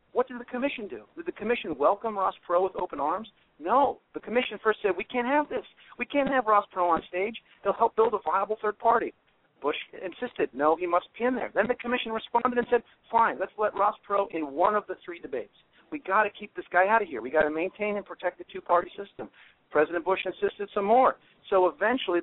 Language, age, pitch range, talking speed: English, 50-69, 165-240 Hz, 235 wpm